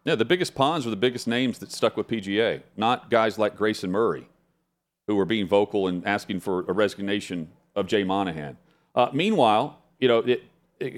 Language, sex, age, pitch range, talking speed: English, male, 40-59, 100-120 Hz, 190 wpm